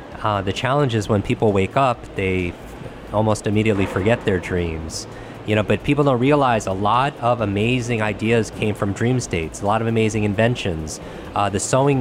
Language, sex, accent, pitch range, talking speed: English, male, American, 100-120 Hz, 190 wpm